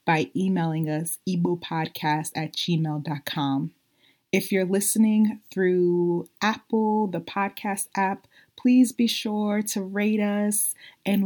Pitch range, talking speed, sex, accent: 175-210 Hz, 110 wpm, female, American